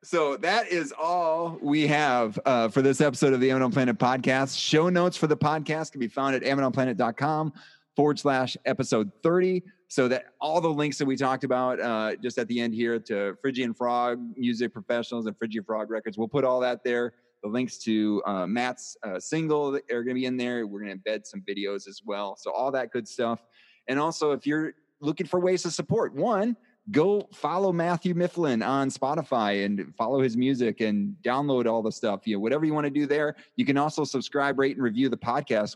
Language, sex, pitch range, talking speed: English, male, 110-145 Hz, 210 wpm